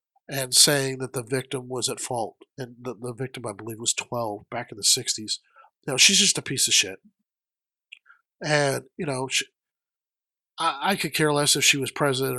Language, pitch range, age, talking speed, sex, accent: English, 130-175 Hz, 50-69, 200 wpm, male, American